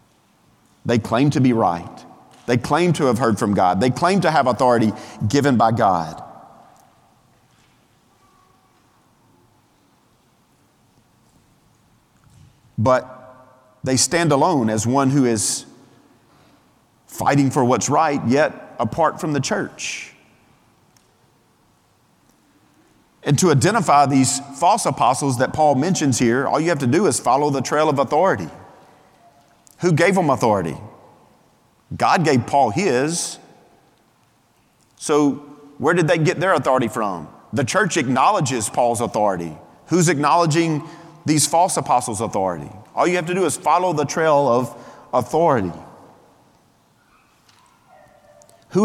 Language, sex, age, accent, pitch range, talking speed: English, male, 40-59, American, 125-160 Hz, 120 wpm